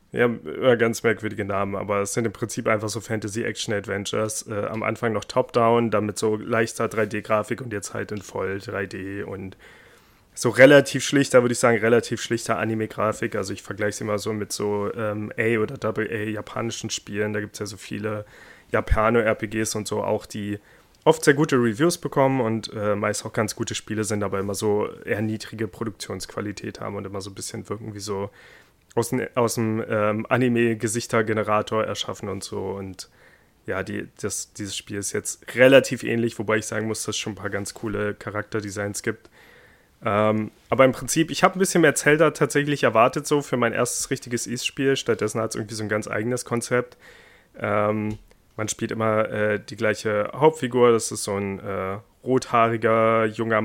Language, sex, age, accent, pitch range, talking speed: German, male, 30-49, German, 105-120 Hz, 180 wpm